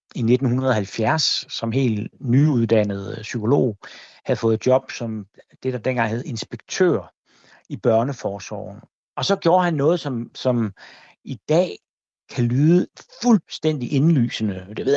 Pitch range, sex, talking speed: 105-140 Hz, male, 130 wpm